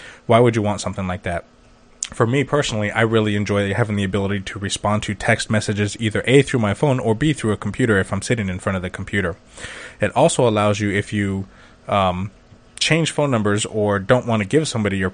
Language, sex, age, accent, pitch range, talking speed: English, male, 20-39, American, 100-120 Hz, 220 wpm